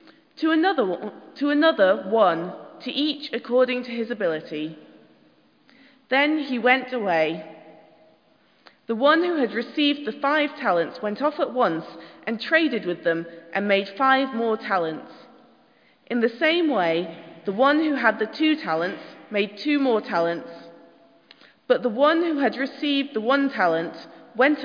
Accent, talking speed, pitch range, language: British, 145 wpm, 175-280 Hz, English